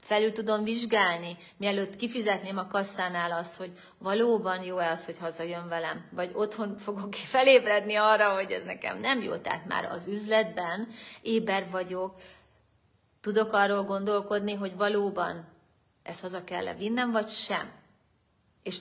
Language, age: Hungarian, 30-49